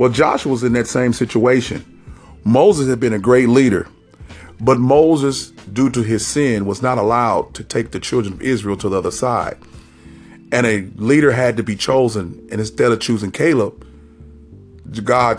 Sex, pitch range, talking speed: male, 105-145 Hz, 175 wpm